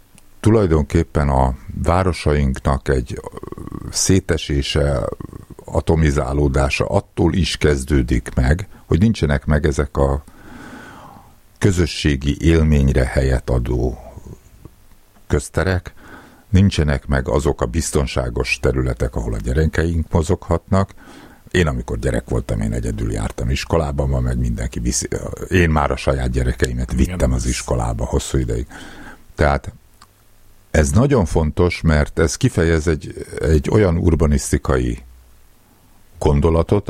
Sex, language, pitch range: male, Hungarian, 65-85 Hz